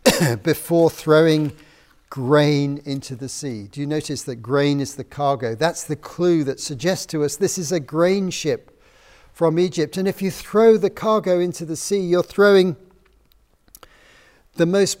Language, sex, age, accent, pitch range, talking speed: English, male, 50-69, British, 135-175 Hz, 165 wpm